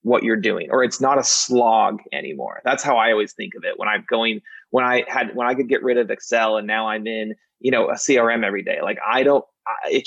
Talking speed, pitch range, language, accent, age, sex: 255 wpm, 115-140 Hz, English, American, 30-49, male